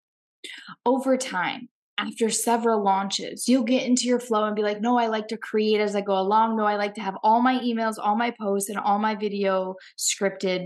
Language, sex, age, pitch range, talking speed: English, female, 20-39, 205-250 Hz, 215 wpm